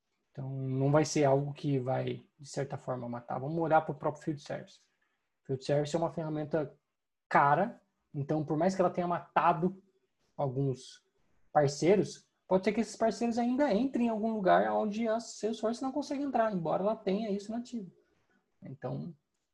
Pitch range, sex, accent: 145-190 Hz, male, Brazilian